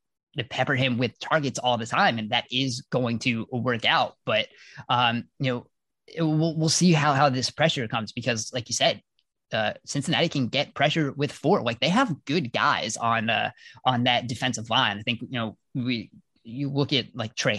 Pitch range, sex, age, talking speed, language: 115-135 Hz, male, 20-39, 200 wpm, English